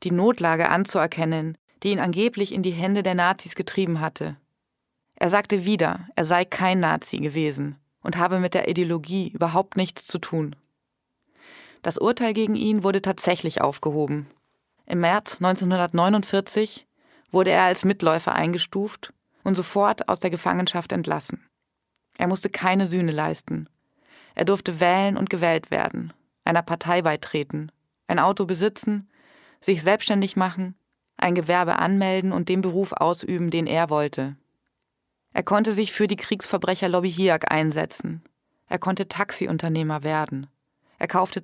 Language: German